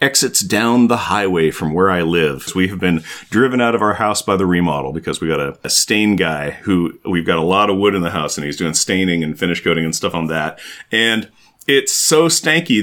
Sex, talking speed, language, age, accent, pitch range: male, 240 wpm, English, 30-49, American, 90-120 Hz